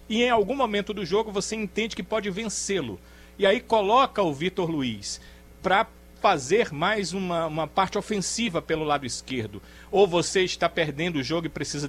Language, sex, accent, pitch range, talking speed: Portuguese, male, Brazilian, 145-195 Hz, 175 wpm